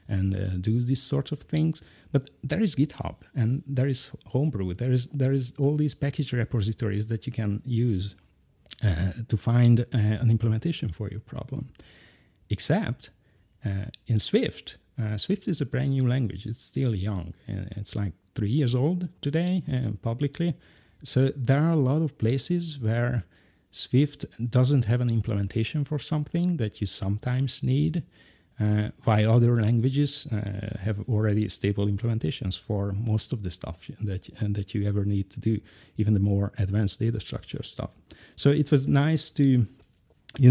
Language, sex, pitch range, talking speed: English, male, 105-135 Hz, 165 wpm